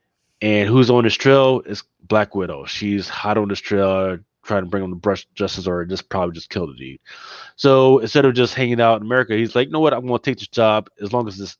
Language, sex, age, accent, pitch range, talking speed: English, male, 20-39, American, 100-125 Hz, 255 wpm